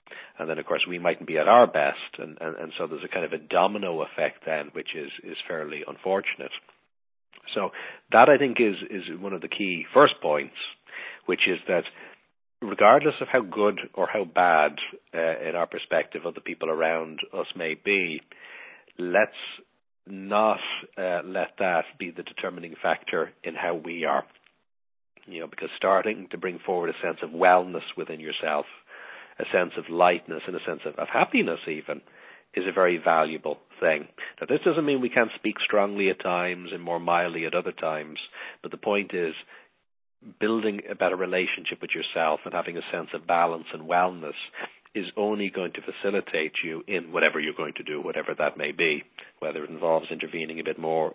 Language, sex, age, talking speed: English, male, 60-79, 185 wpm